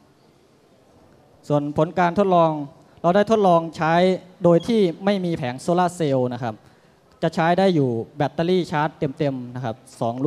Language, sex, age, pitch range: Thai, male, 20-39, 130-165 Hz